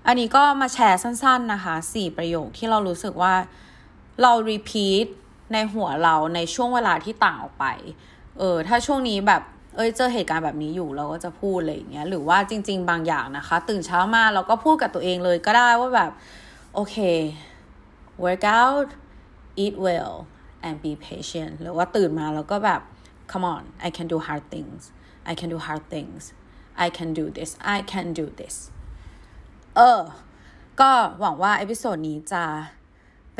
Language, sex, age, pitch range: Thai, female, 20-39, 165-225 Hz